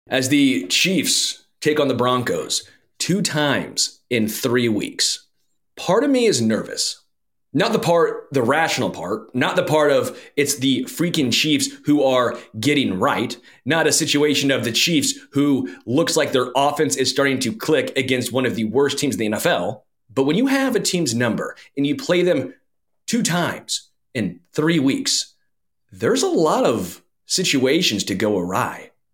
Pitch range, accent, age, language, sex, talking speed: 130-185 Hz, American, 30-49, English, male, 170 wpm